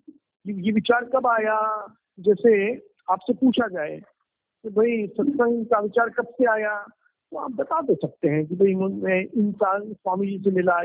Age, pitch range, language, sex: 50-69, 190-265 Hz, Hindi, male